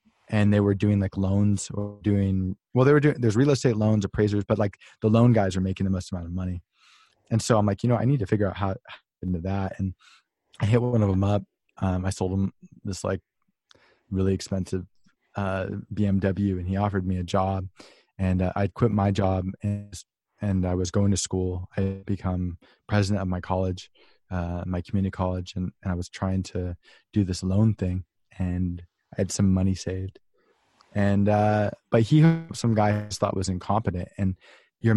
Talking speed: 200 wpm